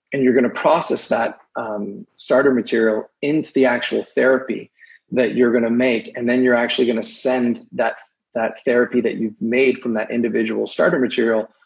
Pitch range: 115-125 Hz